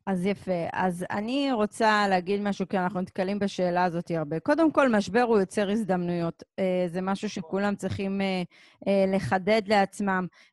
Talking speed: 140 wpm